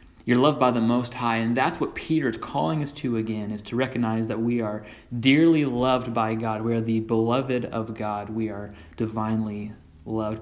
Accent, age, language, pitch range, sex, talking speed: American, 30-49, English, 115-140 Hz, male, 200 wpm